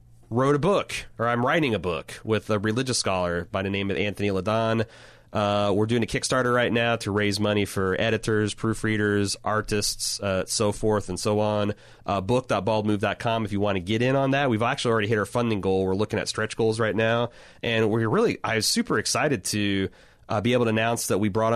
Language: English